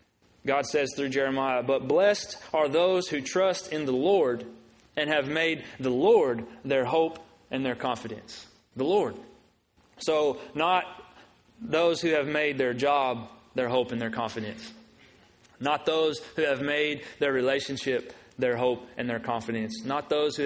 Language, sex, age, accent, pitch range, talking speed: English, male, 30-49, American, 130-170 Hz, 155 wpm